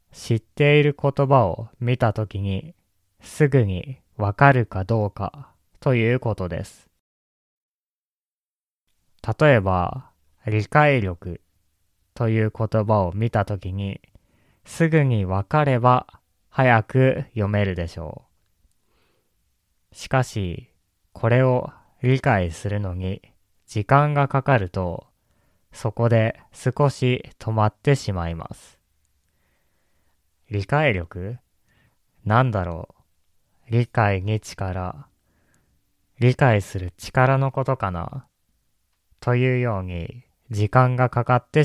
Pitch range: 95-125 Hz